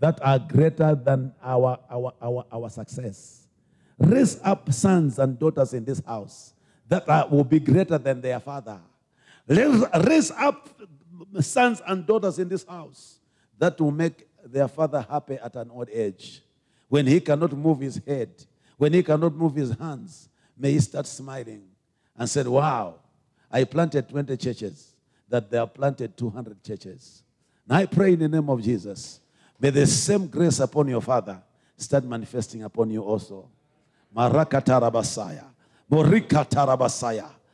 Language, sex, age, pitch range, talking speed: English, male, 50-69, 125-160 Hz, 150 wpm